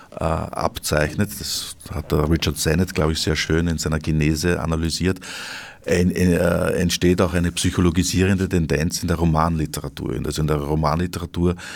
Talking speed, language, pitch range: 135 wpm, German, 80-95 Hz